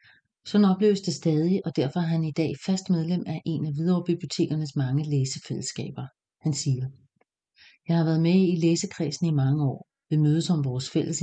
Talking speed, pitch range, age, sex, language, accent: 185 wpm, 150-180 Hz, 40-59, female, English, Danish